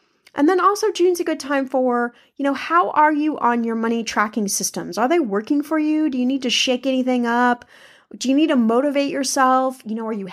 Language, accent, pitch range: English, American, 220-275 Hz